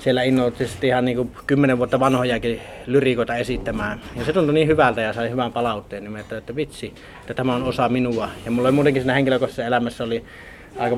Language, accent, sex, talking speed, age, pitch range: Finnish, native, male, 180 wpm, 30-49, 115-130 Hz